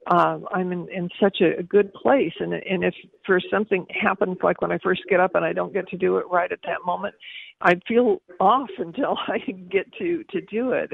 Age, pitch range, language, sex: 50-69, 180-215 Hz, English, female